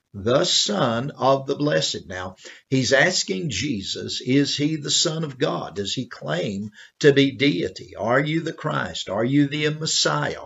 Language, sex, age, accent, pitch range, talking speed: English, male, 50-69, American, 120-155 Hz, 165 wpm